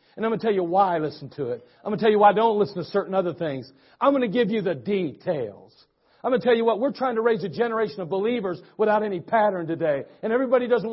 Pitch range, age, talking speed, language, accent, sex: 200-255 Hz, 50-69, 285 wpm, English, American, male